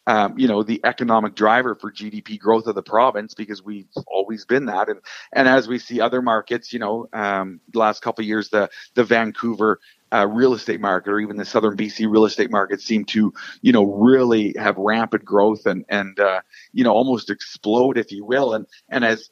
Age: 40-59